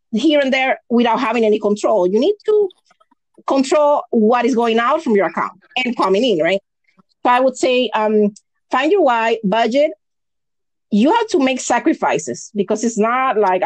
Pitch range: 205-275 Hz